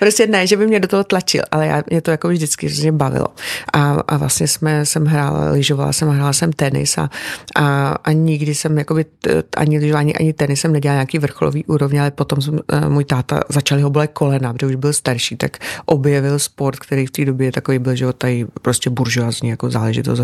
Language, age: Czech, 30-49